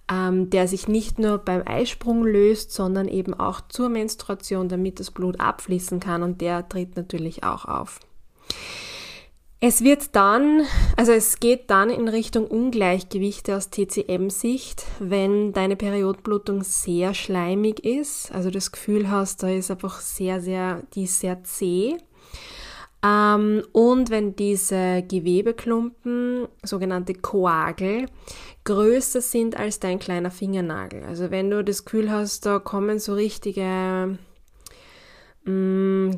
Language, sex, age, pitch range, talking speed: German, female, 10-29, 185-220 Hz, 130 wpm